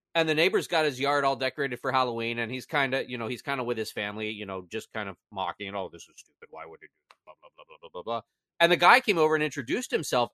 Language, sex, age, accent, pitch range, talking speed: English, male, 30-49, American, 125-185 Hz, 295 wpm